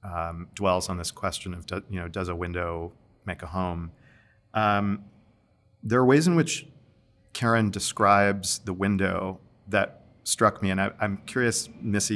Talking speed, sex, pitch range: 155 wpm, male, 95-110 Hz